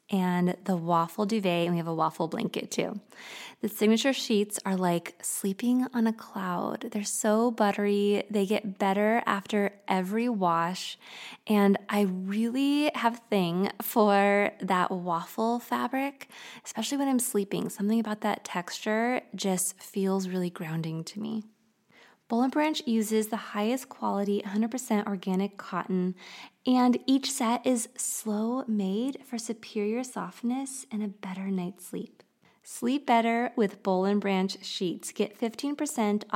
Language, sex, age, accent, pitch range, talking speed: English, female, 20-39, American, 190-230 Hz, 140 wpm